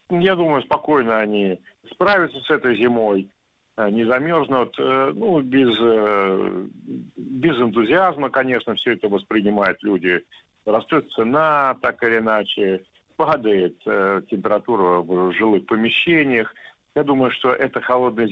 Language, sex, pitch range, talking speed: Russian, male, 100-125 Hz, 110 wpm